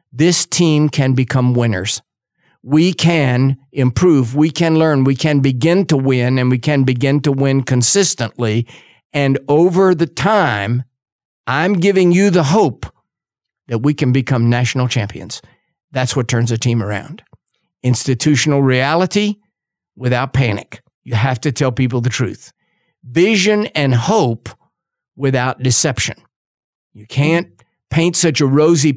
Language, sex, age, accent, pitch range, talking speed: English, male, 50-69, American, 125-170 Hz, 135 wpm